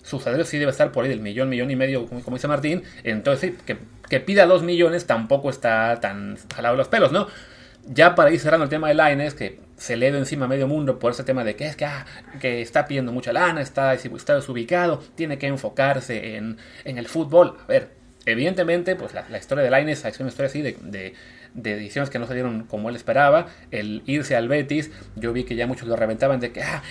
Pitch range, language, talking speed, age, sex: 125-175 Hz, Spanish, 235 wpm, 30-49, male